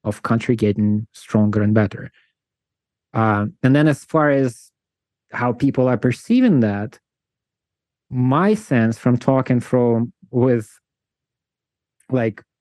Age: 20-39